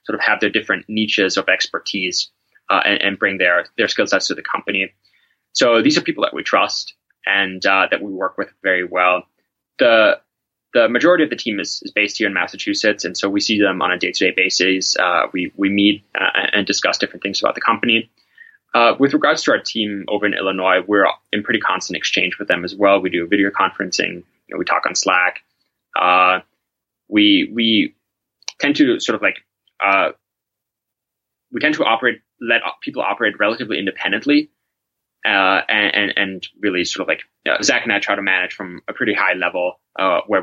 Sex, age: male, 20-39